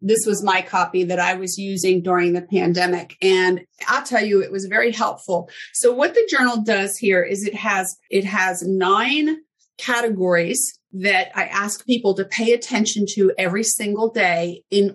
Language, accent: English, American